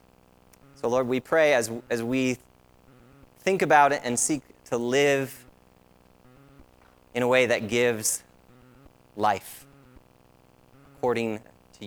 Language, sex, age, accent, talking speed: English, male, 30-49, American, 110 wpm